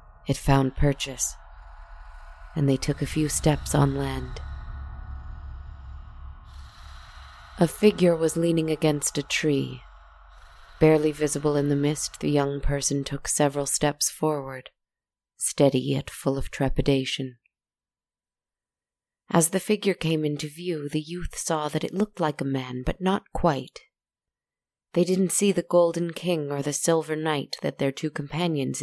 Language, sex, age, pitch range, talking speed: English, female, 30-49, 130-160 Hz, 140 wpm